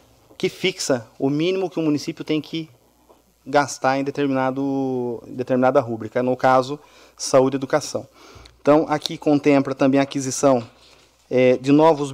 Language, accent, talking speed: Portuguese, Brazilian, 150 wpm